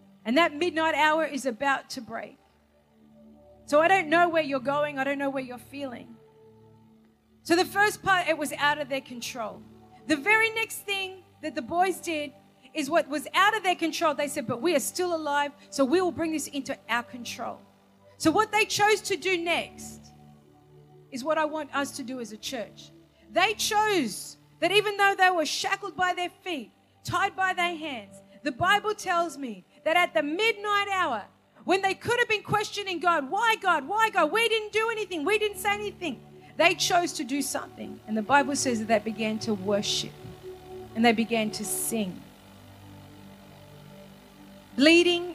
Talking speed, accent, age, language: 185 wpm, Australian, 40-59, English